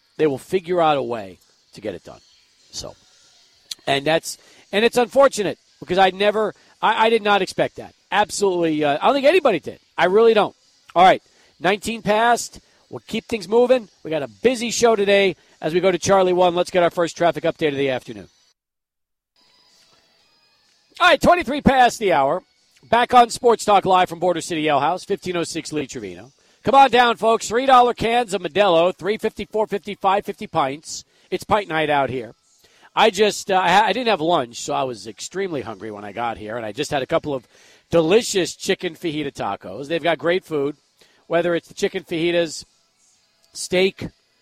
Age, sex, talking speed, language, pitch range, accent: 40-59, male, 185 wpm, English, 150-205 Hz, American